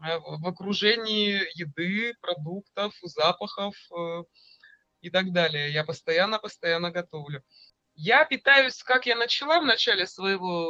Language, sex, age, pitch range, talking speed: Russian, male, 20-39, 165-225 Hz, 105 wpm